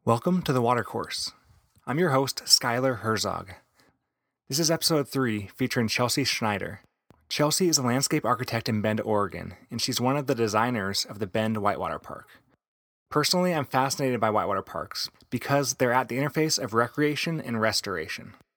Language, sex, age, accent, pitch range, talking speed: English, male, 30-49, American, 110-140 Hz, 165 wpm